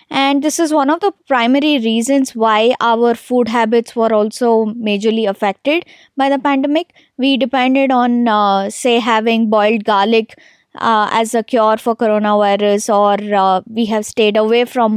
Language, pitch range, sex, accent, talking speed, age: English, 220-265 Hz, female, Indian, 160 wpm, 20-39